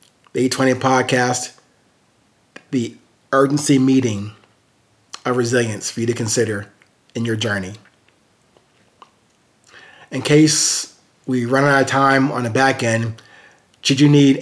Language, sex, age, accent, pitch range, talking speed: English, male, 30-49, American, 125-140 Hz, 120 wpm